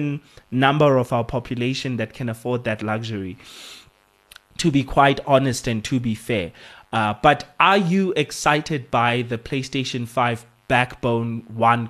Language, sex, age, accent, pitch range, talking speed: English, male, 20-39, South African, 120-150 Hz, 140 wpm